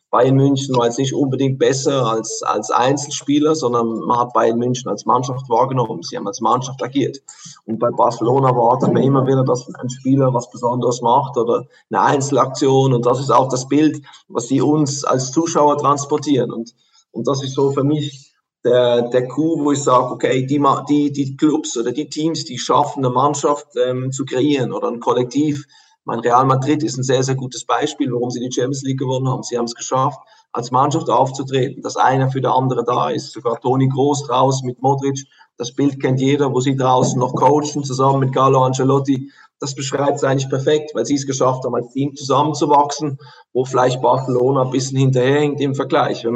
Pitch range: 125-145 Hz